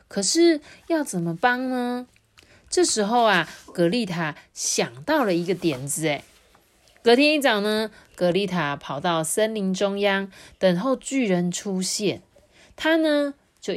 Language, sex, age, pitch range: Chinese, female, 30-49, 160-225 Hz